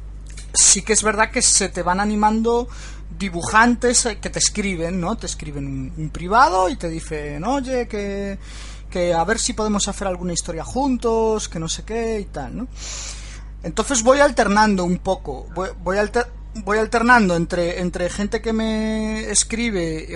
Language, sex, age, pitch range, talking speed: Spanish, male, 30-49, 155-220 Hz, 165 wpm